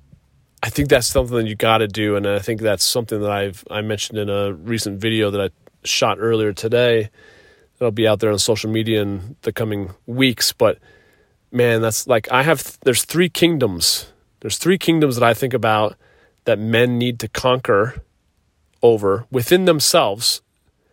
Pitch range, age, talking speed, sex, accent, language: 105-125 Hz, 30-49, 180 wpm, male, American, English